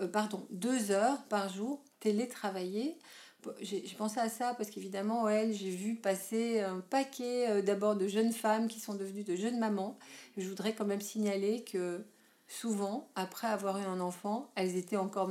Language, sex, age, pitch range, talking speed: French, female, 40-59, 190-225 Hz, 170 wpm